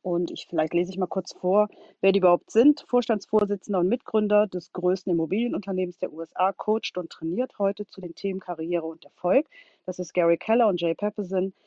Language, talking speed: German, 190 wpm